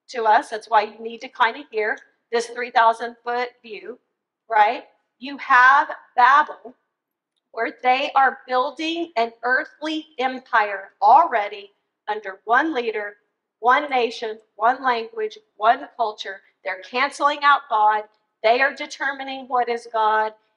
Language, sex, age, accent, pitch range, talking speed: English, female, 50-69, American, 220-260 Hz, 130 wpm